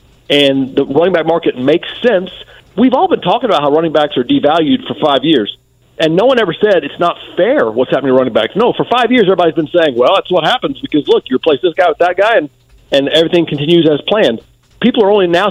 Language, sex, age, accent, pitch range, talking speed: English, male, 40-59, American, 135-180 Hz, 245 wpm